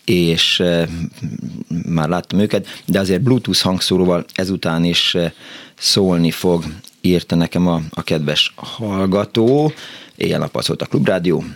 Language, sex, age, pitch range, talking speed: Hungarian, male, 30-49, 85-100 Hz, 120 wpm